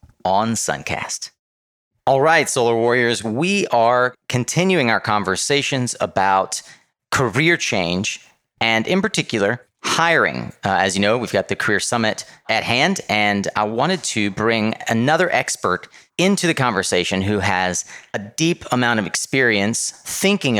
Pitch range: 100-135 Hz